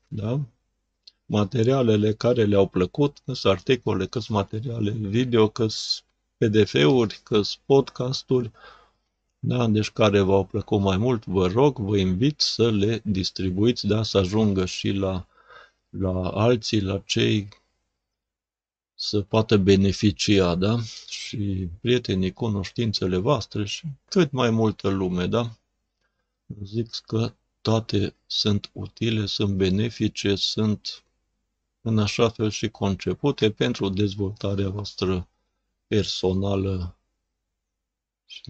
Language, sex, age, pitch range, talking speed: Romanian, male, 50-69, 95-110 Hz, 110 wpm